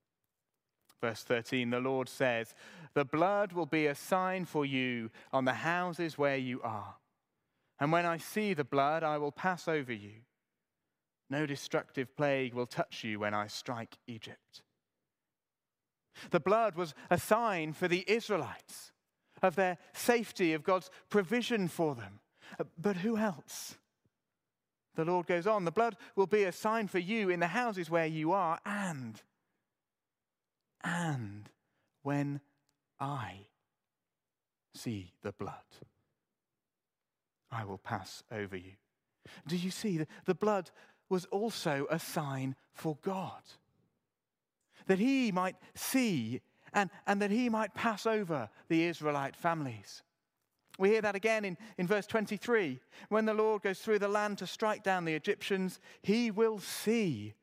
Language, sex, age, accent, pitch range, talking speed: English, male, 30-49, British, 140-205 Hz, 145 wpm